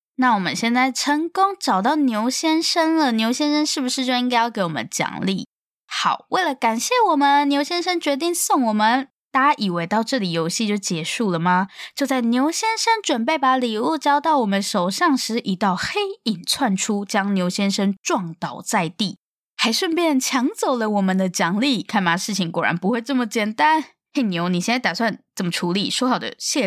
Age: 10-29